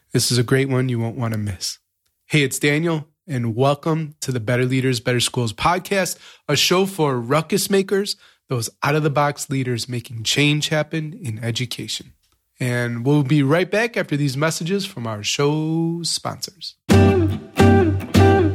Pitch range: 125-165 Hz